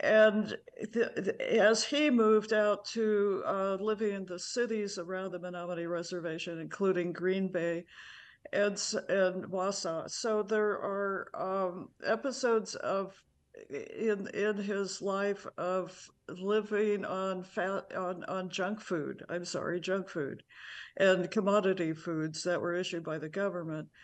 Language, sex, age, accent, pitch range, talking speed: English, female, 60-79, American, 180-210 Hz, 135 wpm